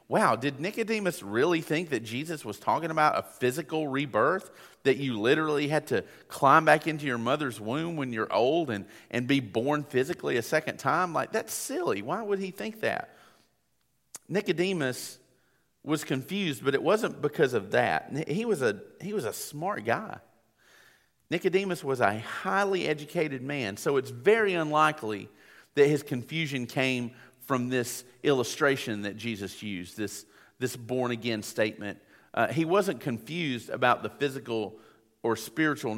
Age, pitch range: 40-59, 115-155 Hz